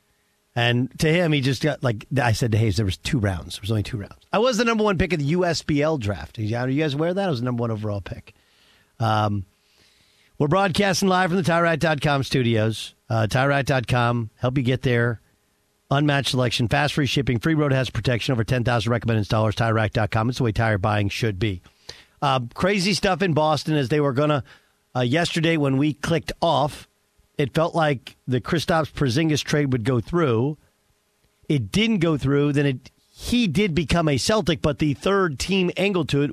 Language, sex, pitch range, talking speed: English, male, 115-165 Hz, 200 wpm